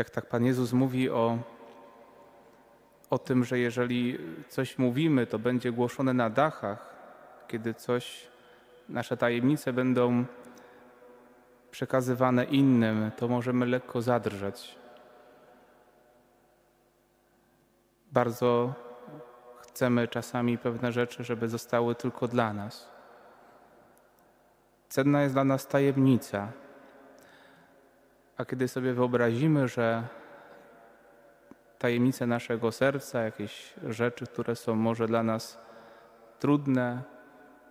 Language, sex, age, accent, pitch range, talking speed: Polish, male, 30-49, native, 115-125 Hz, 95 wpm